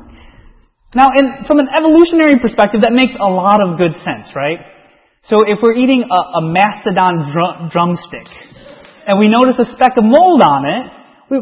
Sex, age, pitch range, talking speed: male, 30-49, 165-250 Hz, 165 wpm